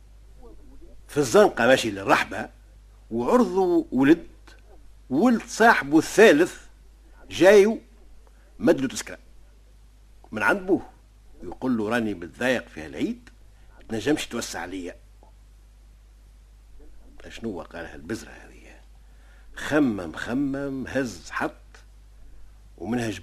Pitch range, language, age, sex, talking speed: 105-150 Hz, Arabic, 60-79, male, 90 wpm